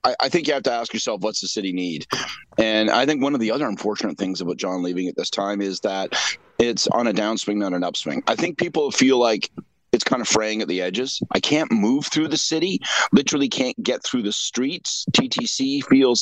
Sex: male